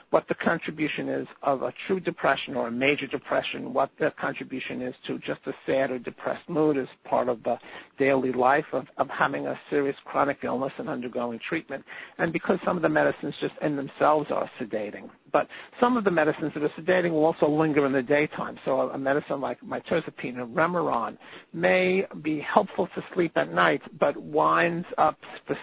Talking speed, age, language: 190 wpm, 60-79, English